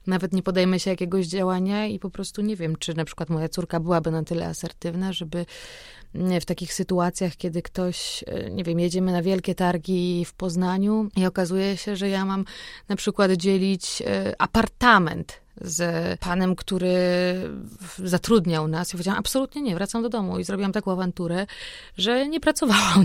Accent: native